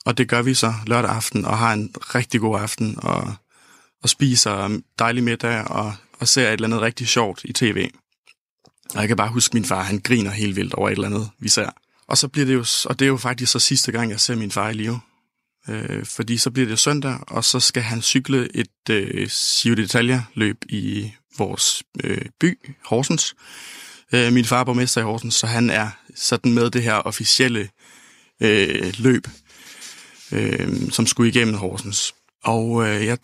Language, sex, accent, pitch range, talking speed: Danish, male, native, 105-125 Hz, 195 wpm